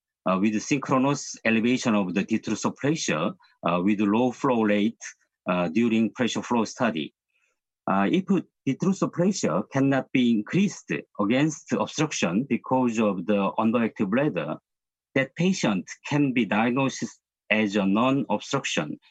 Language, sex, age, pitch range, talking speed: English, male, 50-69, 100-135 Hz, 130 wpm